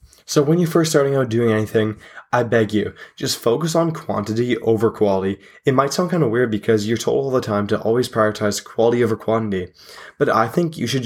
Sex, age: male, 20-39